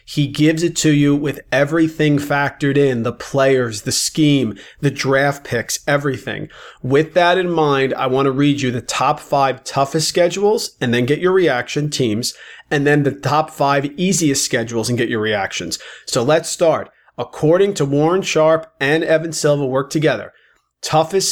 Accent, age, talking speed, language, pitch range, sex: American, 40-59, 170 wpm, English, 130-160 Hz, male